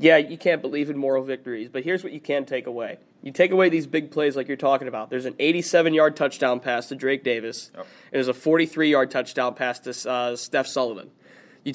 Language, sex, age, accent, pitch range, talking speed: English, male, 20-39, American, 130-160 Hz, 220 wpm